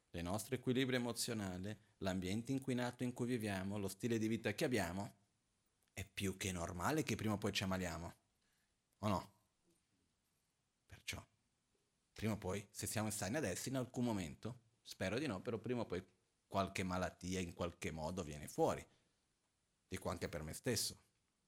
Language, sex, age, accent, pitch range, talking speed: Italian, male, 30-49, native, 95-120 Hz, 160 wpm